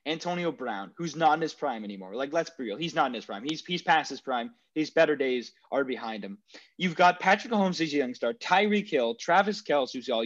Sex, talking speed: male, 240 wpm